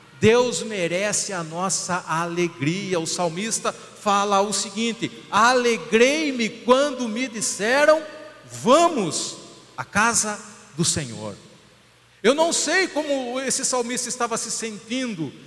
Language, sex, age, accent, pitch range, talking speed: Portuguese, male, 40-59, Brazilian, 160-245 Hz, 110 wpm